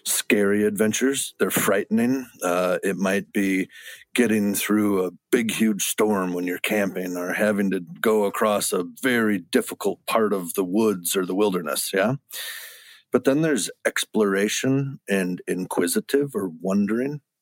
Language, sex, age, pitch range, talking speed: English, male, 50-69, 100-155 Hz, 140 wpm